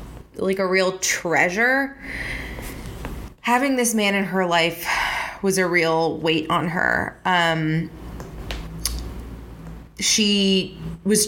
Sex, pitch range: female, 160-190 Hz